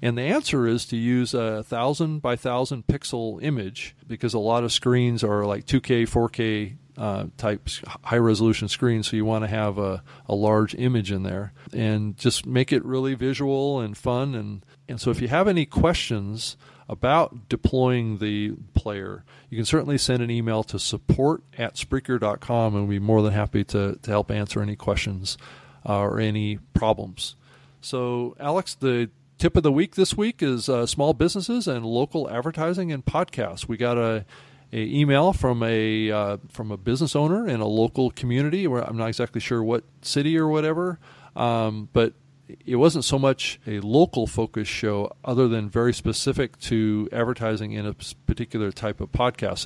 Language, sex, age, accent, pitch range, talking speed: English, male, 40-59, American, 110-135 Hz, 180 wpm